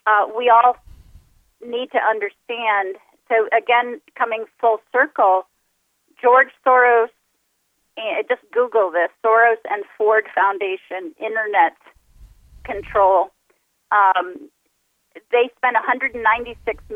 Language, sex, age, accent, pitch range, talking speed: English, female, 40-59, American, 200-250 Hz, 95 wpm